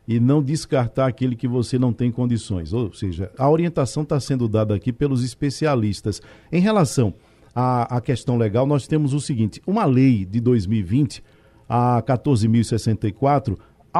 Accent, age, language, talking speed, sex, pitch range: Brazilian, 50-69, Portuguese, 150 wpm, male, 115-155 Hz